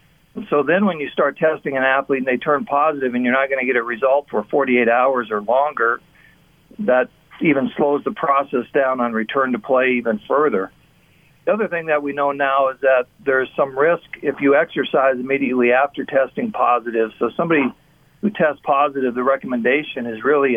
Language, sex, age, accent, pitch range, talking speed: English, male, 50-69, American, 120-150 Hz, 190 wpm